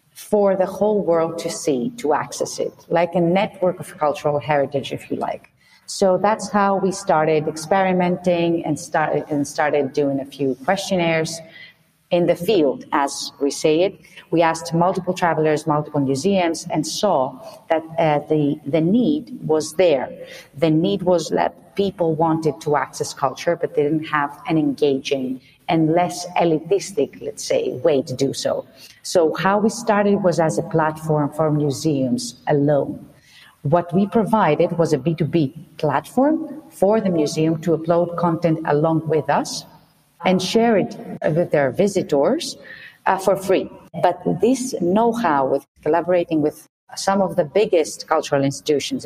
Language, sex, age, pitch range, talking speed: English, female, 40-59, 150-185 Hz, 155 wpm